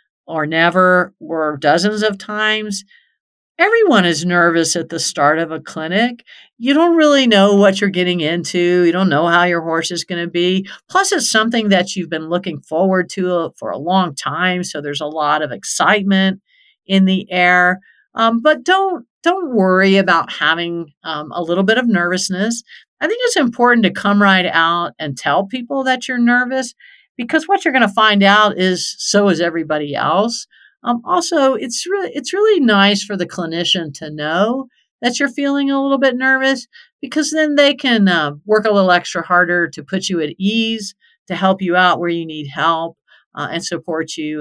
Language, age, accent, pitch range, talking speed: English, 50-69, American, 165-235 Hz, 185 wpm